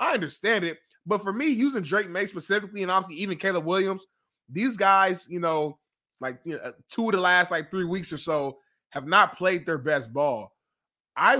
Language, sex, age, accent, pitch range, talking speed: English, male, 20-39, American, 165-210 Hz, 200 wpm